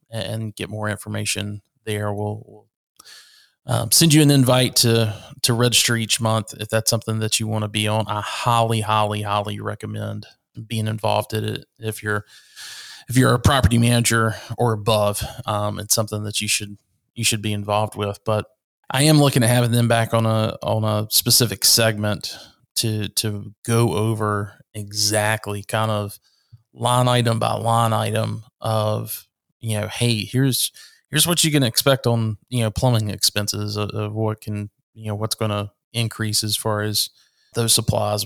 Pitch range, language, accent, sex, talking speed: 105-120 Hz, English, American, male, 175 wpm